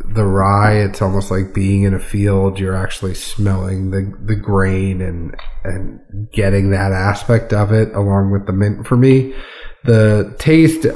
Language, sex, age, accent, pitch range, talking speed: English, male, 30-49, American, 100-120 Hz, 165 wpm